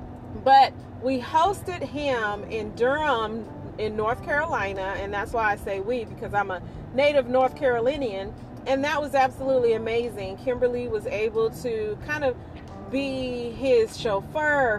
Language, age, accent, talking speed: English, 30-49, American, 140 wpm